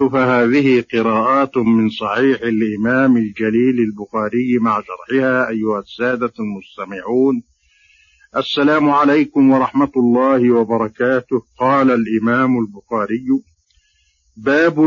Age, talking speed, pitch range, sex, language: 50-69, 85 wpm, 110-135 Hz, male, Arabic